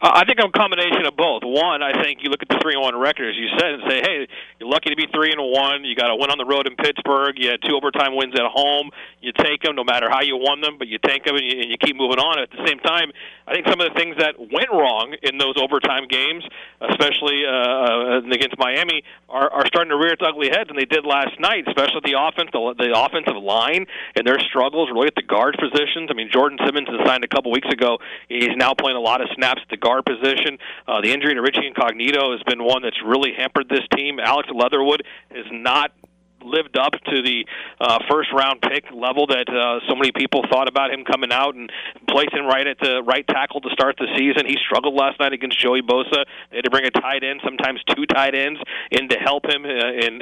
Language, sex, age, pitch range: English, male, 40-59, 125-150 Hz